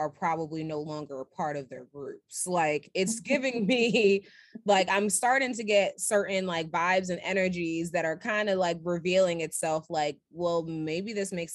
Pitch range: 170-210 Hz